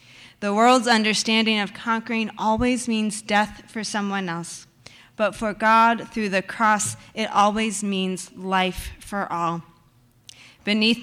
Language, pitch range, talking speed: English, 195-230 Hz, 130 wpm